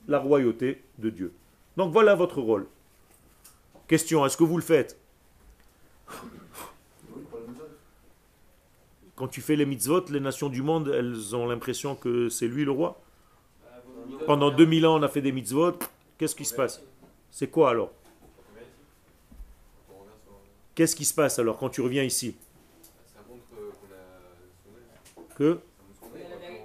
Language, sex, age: French, male, 40-59